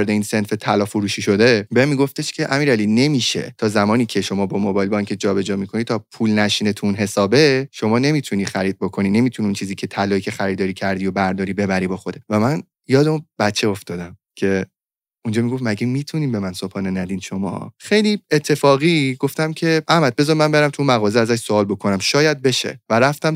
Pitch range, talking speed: 105-145 Hz, 190 wpm